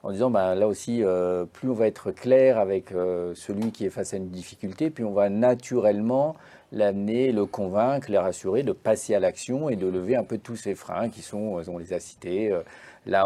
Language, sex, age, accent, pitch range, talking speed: French, male, 40-59, French, 100-120 Hz, 220 wpm